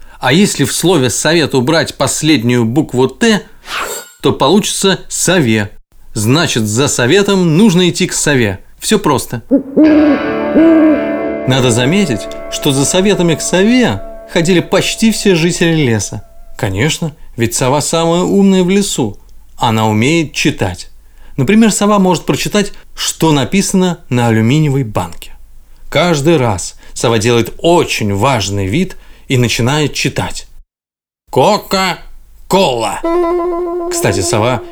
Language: Russian